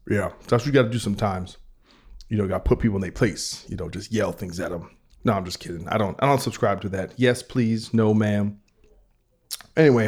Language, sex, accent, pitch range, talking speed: English, male, American, 100-120 Hz, 245 wpm